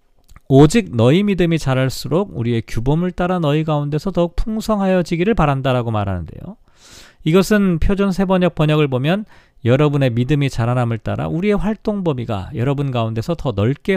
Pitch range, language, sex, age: 120-185 Hz, Korean, male, 40-59